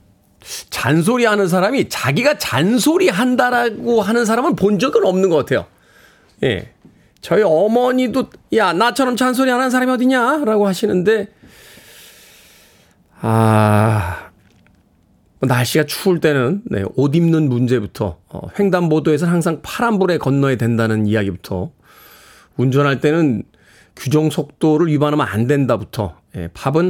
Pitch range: 140-215 Hz